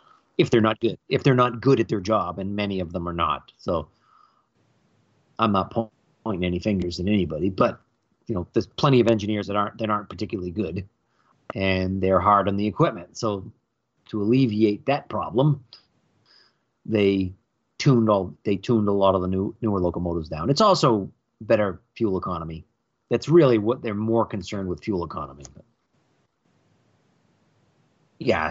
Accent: American